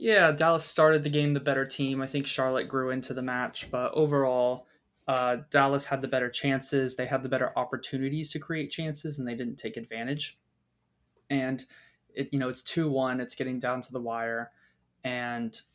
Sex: male